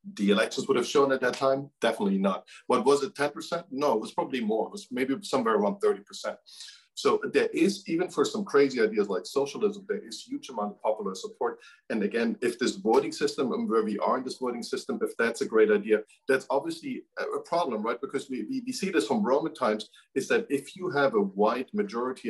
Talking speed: 220 wpm